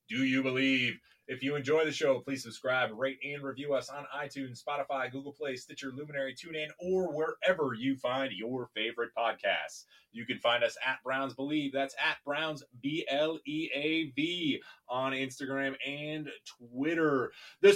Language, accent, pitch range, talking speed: English, American, 130-160 Hz, 165 wpm